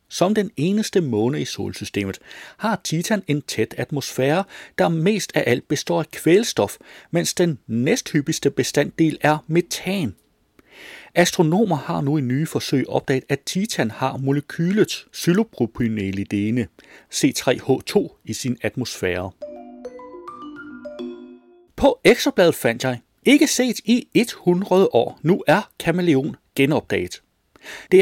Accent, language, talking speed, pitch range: native, Danish, 115 wpm, 120-180 Hz